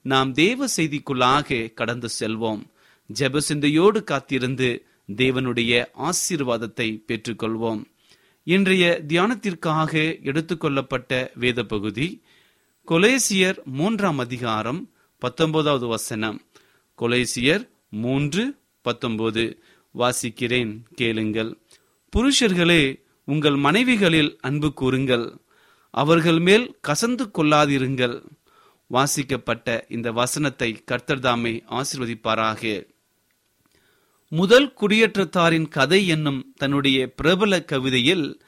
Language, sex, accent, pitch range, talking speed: Tamil, male, native, 125-175 Hz, 65 wpm